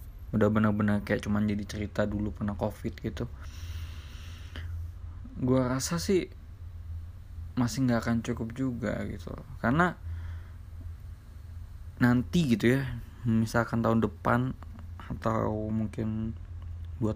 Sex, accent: male, native